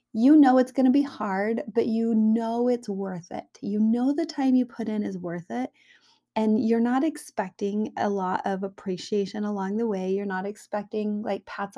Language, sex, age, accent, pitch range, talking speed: English, female, 30-49, American, 205-265 Hz, 200 wpm